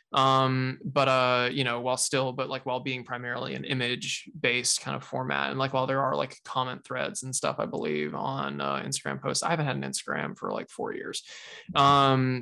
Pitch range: 125-145 Hz